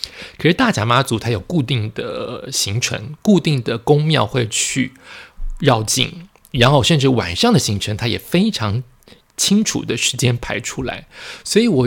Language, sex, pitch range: Chinese, male, 120-160 Hz